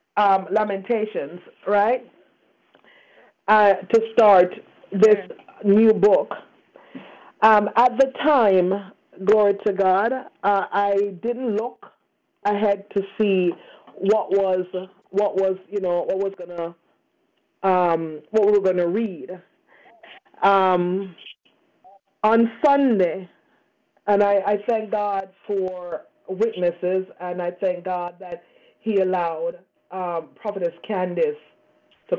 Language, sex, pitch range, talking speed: English, female, 185-225 Hz, 110 wpm